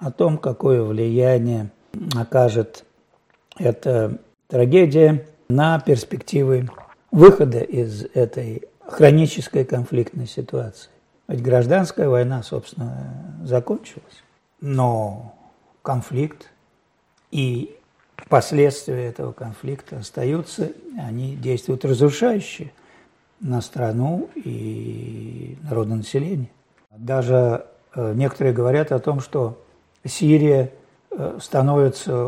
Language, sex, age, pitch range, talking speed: Russian, male, 60-79, 120-140 Hz, 80 wpm